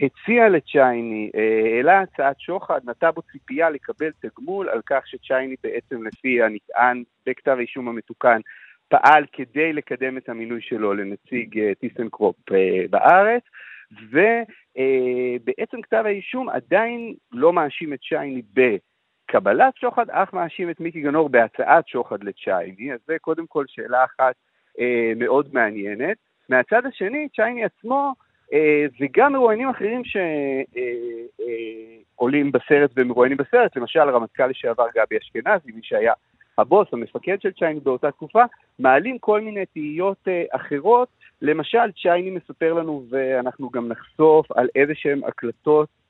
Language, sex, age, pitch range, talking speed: Hebrew, male, 50-69, 125-190 Hz, 125 wpm